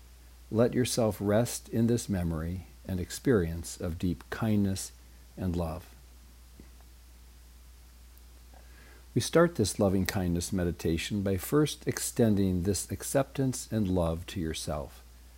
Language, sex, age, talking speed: English, male, 60-79, 105 wpm